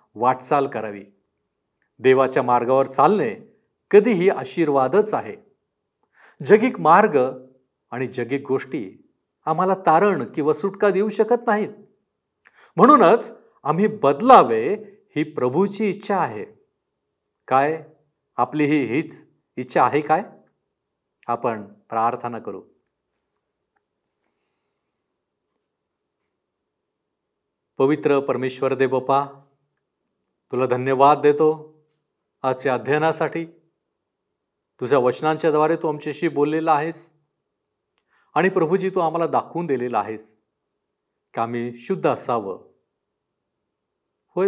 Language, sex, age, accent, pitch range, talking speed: Marathi, male, 50-69, native, 130-175 Hz, 85 wpm